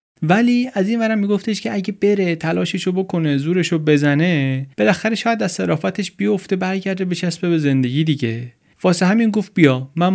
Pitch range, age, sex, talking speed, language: 130-180 Hz, 30-49, male, 155 wpm, Persian